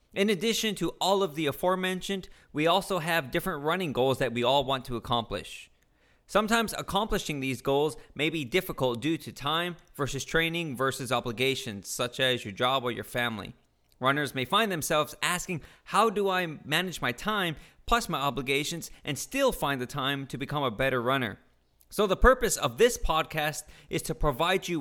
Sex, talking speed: male, 180 wpm